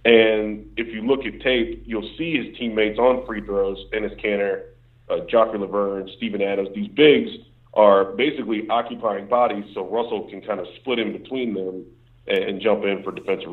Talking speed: 175 wpm